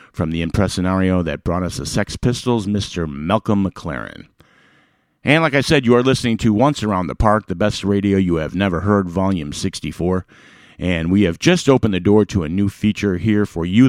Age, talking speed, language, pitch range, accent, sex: 50-69, 205 wpm, English, 90-115 Hz, American, male